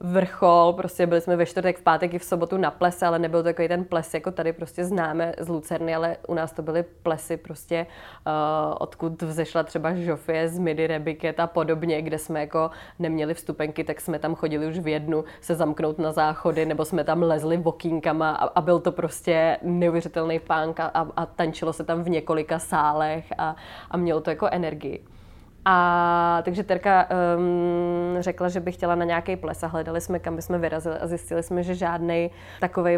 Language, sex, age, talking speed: Czech, female, 20-39, 190 wpm